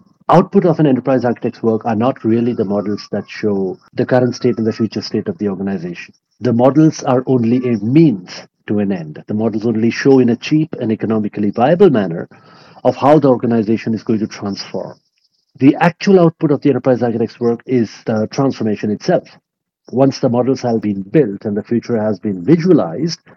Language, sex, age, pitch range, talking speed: English, male, 50-69, 110-150 Hz, 195 wpm